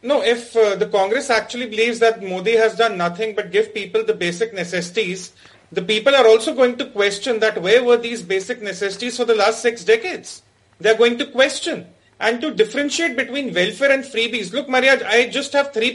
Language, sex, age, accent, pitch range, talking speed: English, male, 40-59, Indian, 210-270 Hz, 205 wpm